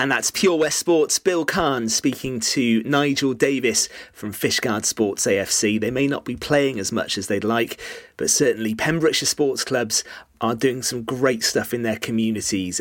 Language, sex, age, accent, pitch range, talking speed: English, male, 30-49, British, 110-145 Hz, 180 wpm